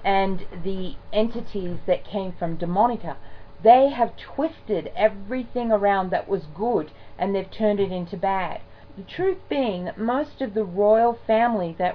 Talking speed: 155 wpm